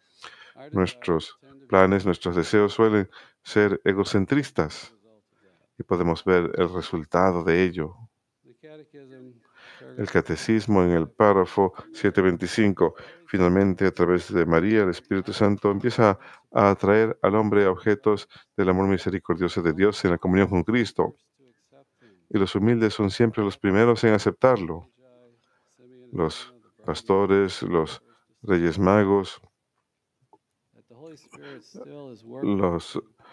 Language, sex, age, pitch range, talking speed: Spanish, male, 50-69, 90-115 Hz, 110 wpm